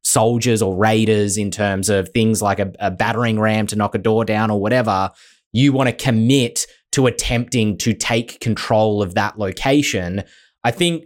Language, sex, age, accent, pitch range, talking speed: English, male, 20-39, Australian, 110-140 Hz, 180 wpm